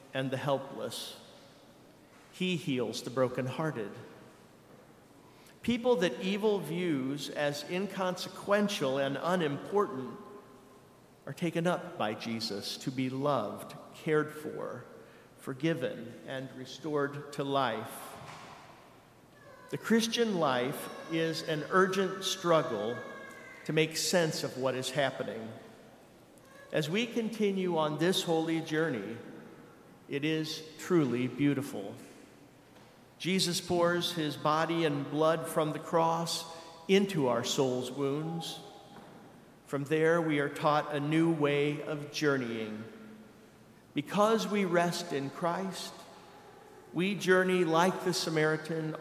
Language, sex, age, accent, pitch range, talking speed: English, male, 50-69, American, 140-175 Hz, 110 wpm